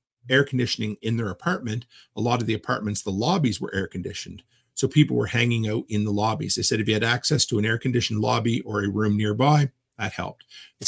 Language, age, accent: English, 50-69, American